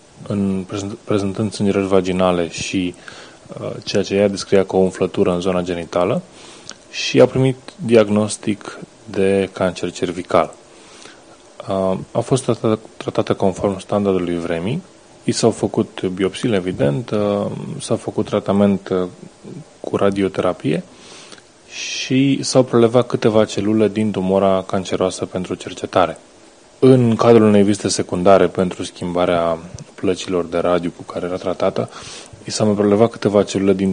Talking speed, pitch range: 125 wpm, 95-110 Hz